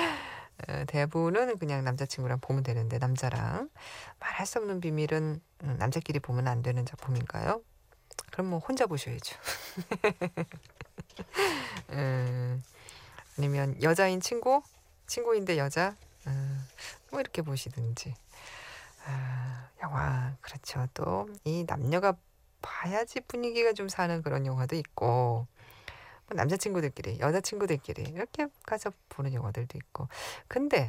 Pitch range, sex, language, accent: 130-190 Hz, female, Korean, native